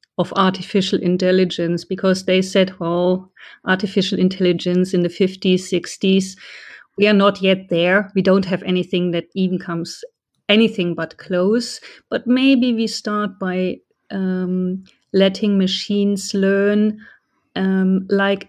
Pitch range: 185-205 Hz